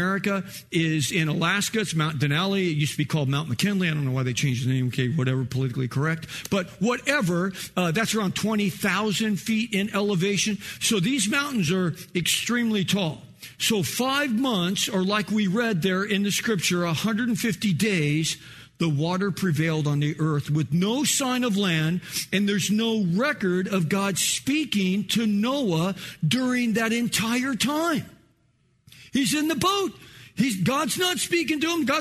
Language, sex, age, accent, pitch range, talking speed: English, male, 50-69, American, 180-260 Hz, 170 wpm